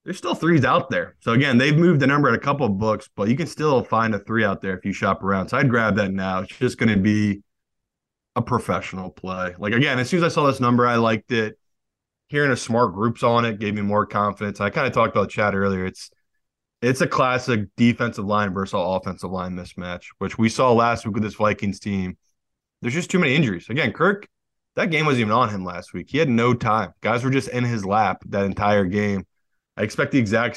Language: English